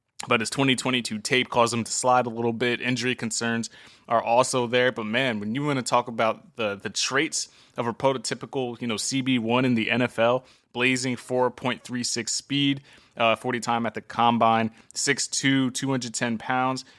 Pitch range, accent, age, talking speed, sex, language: 110-130 Hz, American, 20-39, 170 wpm, male, English